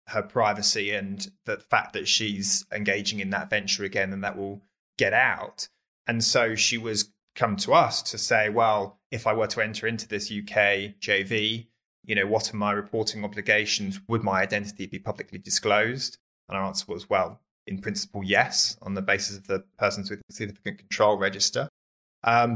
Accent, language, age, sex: British, English, 20-39, male